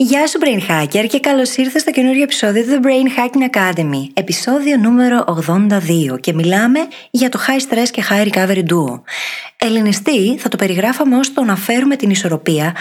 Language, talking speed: Greek, 175 wpm